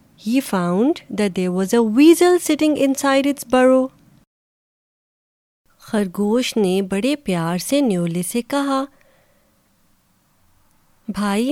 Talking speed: 105 wpm